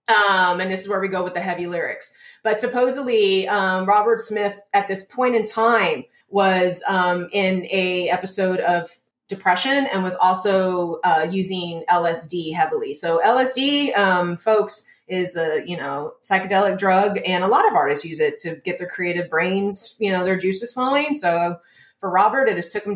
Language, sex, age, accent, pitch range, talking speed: English, female, 30-49, American, 185-260 Hz, 180 wpm